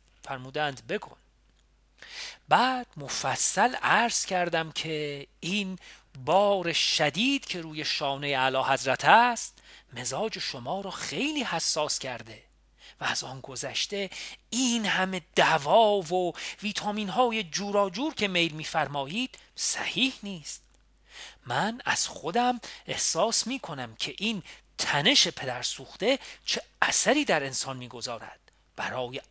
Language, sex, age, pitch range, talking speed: Persian, male, 40-59, 145-210 Hz, 115 wpm